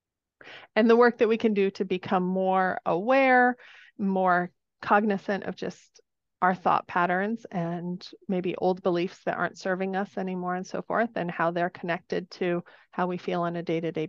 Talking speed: 175 wpm